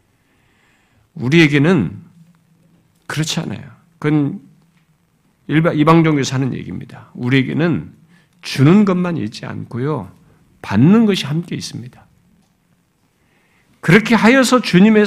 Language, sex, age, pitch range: Korean, male, 50-69, 145-185 Hz